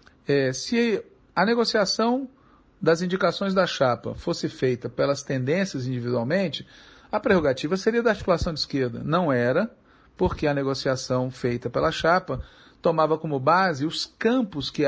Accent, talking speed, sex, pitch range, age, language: Brazilian, 135 wpm, male, 135-195 Hz, 40-59, Portuguese